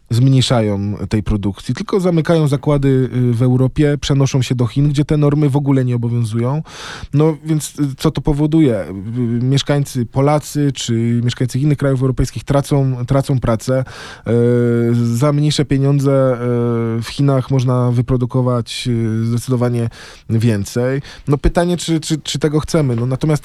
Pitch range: 125-145 Hz